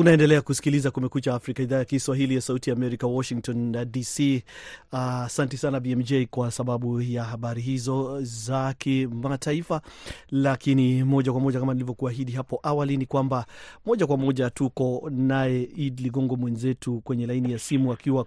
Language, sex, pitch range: Swahili, male, 125-150 Hz